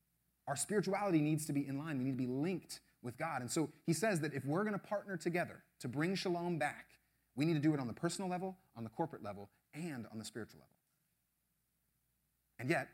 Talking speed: 225 wpm